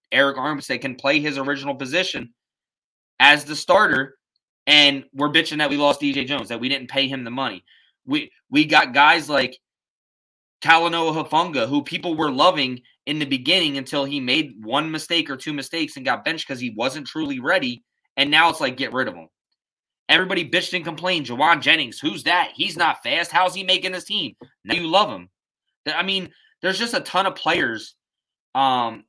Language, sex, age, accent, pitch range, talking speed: English, male, 20-39, American, 125-165 Hz, 190 wpm